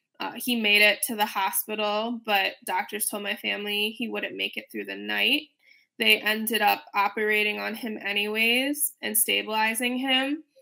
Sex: female